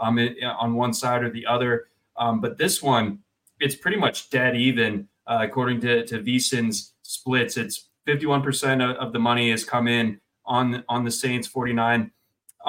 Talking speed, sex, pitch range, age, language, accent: 180 wpm, male, 115-135 Hz, 20-39, English, American